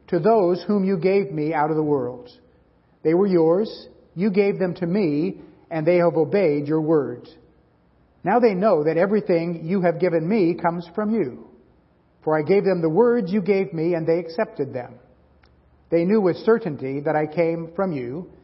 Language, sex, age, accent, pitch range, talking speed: English, male, 50-69, American, 150-190 Hz, 190 wpm